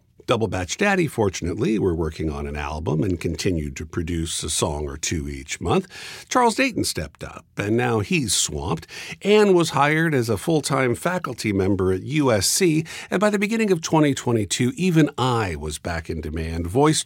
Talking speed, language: 175 wpm, English